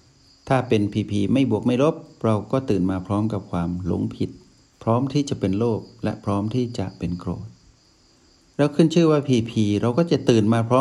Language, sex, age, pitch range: Thai, male, 60-79, 95-125 Hz